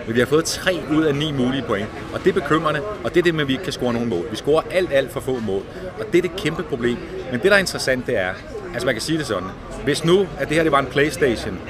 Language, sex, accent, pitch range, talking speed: Danish, male, native, 115-145 Hz, 315 wpm